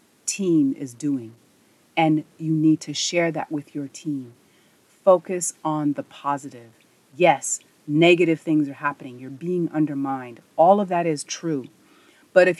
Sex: female